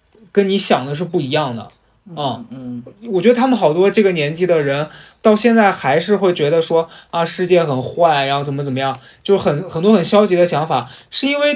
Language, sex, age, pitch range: Chinese, male, 20-39, 140-205 Hz